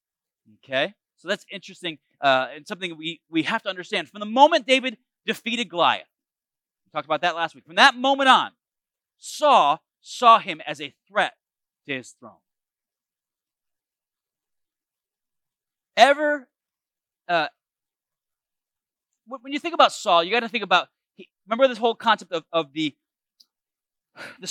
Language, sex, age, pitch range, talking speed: English, male, 30-49, 165-250 Hz, 140 wpm